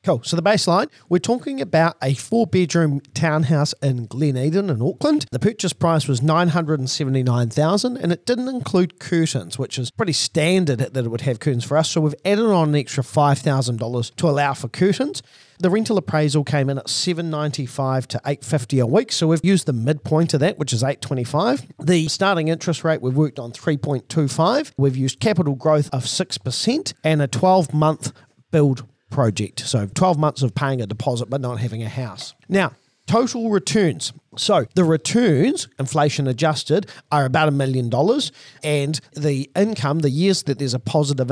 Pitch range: 130-170 Hz